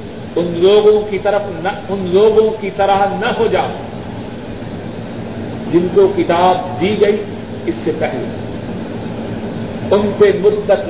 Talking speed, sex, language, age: 105 wpm, male, Urdu, 50-69